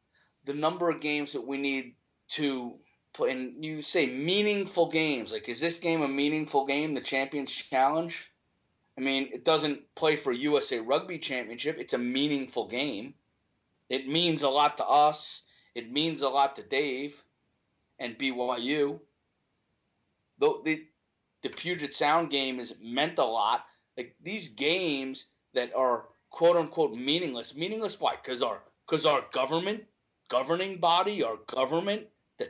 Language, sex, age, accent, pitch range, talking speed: English, male, 30-49, American, 140-180 Hz, 150 wpm